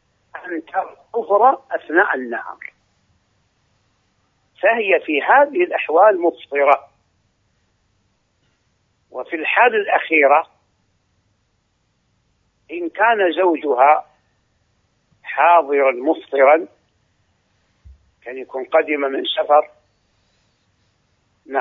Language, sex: Arabic, male